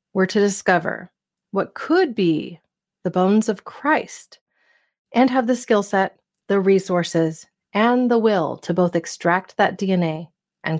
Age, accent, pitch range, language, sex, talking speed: 30-49, American, 185-215 Hz, English, female, 145 wpm